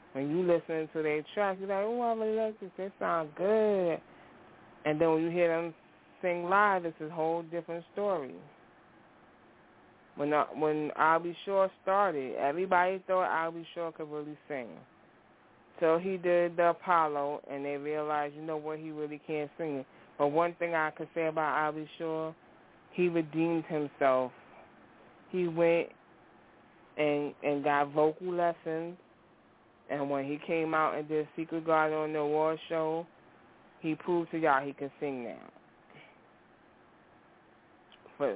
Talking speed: 155 wpm